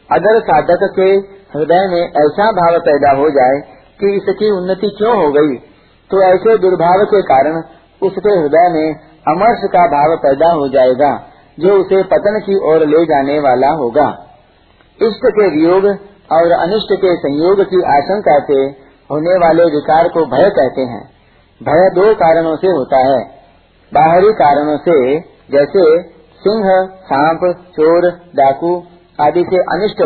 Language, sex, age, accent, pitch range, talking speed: Hindi, male, 50-69, native, 145-190 Hz, 145 wpm